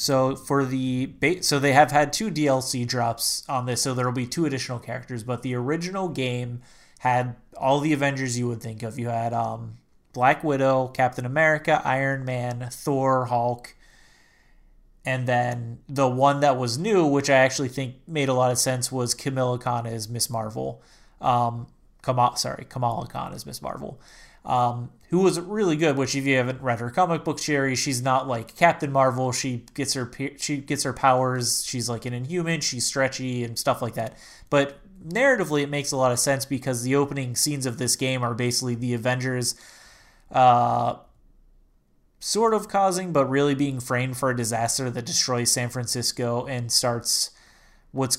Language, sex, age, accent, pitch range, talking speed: English, male, 30-49, American, 120-140 Hz, 180 wpm